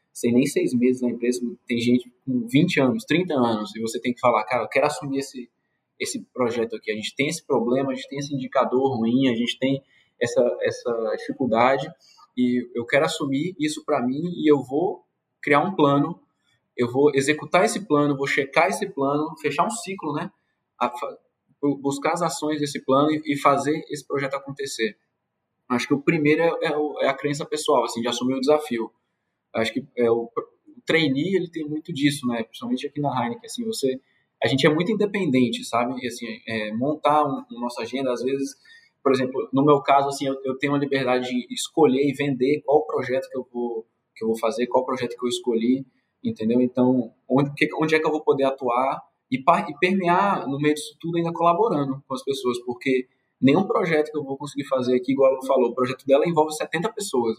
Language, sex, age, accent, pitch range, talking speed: Portuguese, male, 20-39, Brazilian, 125-150 Hz, 205 wpm